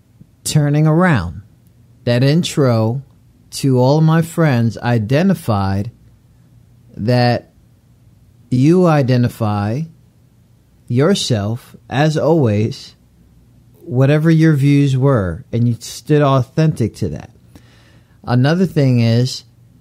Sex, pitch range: male, 120-150 Hz